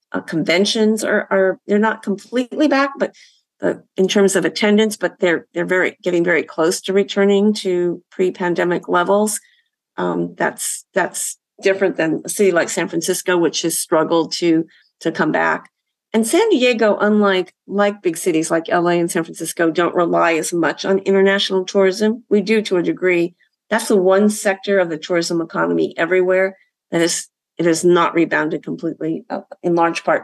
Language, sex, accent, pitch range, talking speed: English, female, American, 170-205 Hz, 170 wpm